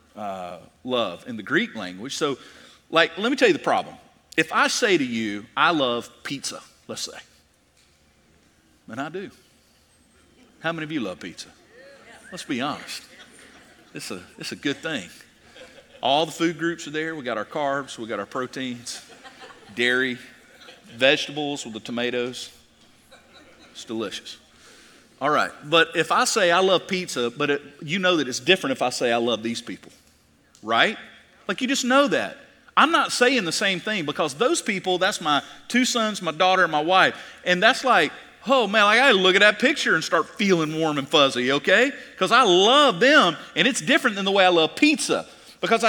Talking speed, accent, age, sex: 185 wpm, American, 40-59, male